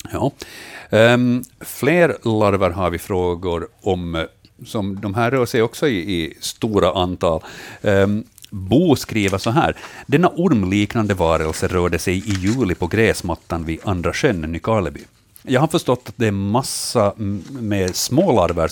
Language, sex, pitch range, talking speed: Swedish, male, 85-105 Hz, 145 wpm